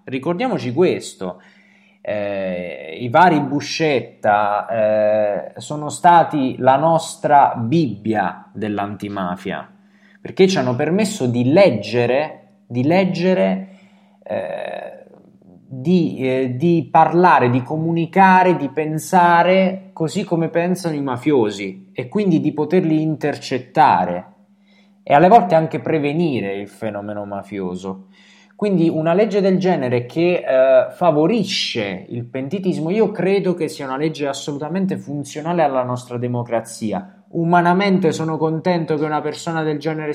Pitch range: 125-180 Hz